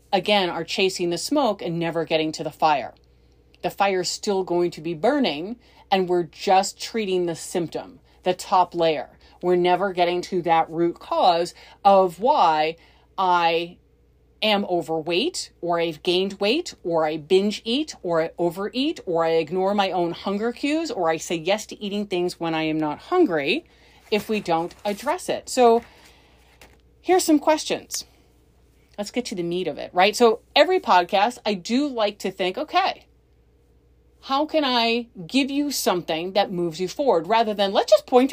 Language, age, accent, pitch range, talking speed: English, 30-49, American, 165-235 Hz, 175 wpm